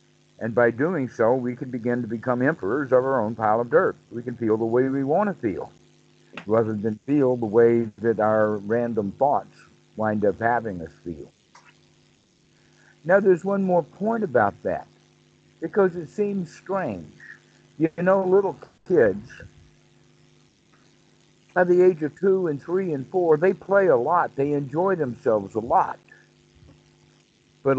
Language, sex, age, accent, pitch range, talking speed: English, male, 60-79, American, 120-160 Hz, 160 wpm